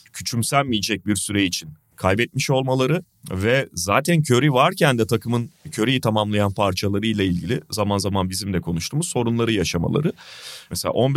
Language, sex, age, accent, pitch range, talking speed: Turkish, male, 30-49, native, 105-125 Hz, 125 wpm